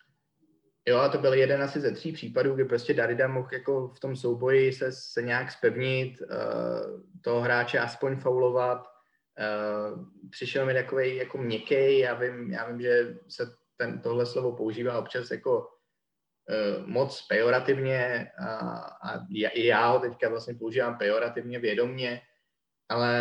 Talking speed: 140 wpm